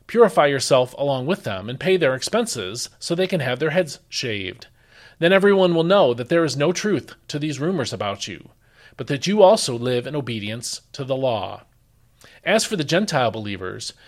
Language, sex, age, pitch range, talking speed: English, male, 40-59, 120-170 Hz, 190 wpm